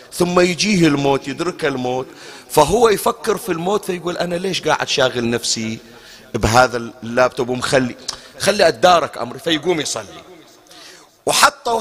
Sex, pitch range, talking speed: male, 135-175 Hz, 120 wpm